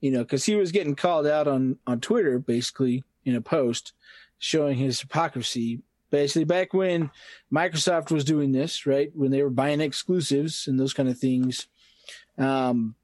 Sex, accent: male, American